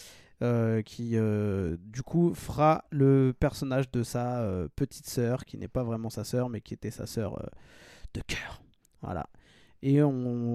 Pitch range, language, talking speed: 110-140 Hz, French, 170 wpm